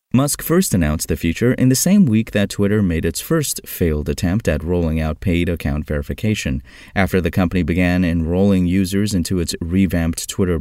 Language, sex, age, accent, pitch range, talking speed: English, male, 30-49, American, 80-115 Hz, 180 wpm